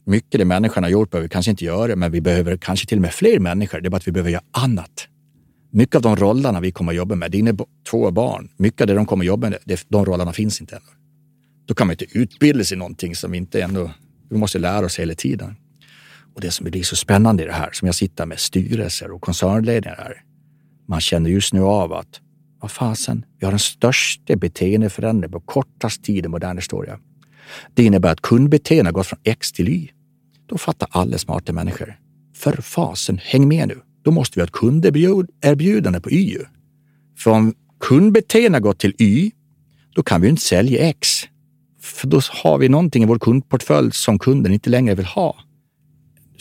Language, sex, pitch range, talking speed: Swedish, male, 95-150 Hz, 210 wpm